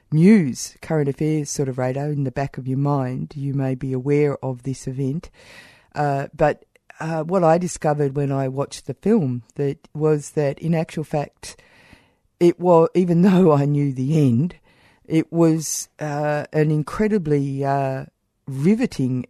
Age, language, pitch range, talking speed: 50-69, English, 135-155 Hz, 160 wpm